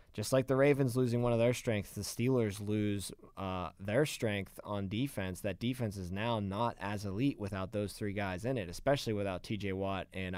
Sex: male